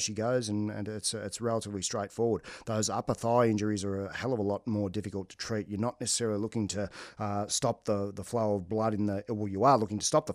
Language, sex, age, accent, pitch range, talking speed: English, male, 40-59, Australian, 100-115 Hz, 250 wpm